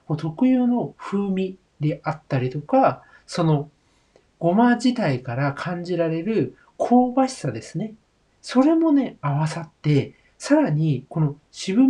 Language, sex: Japanese, male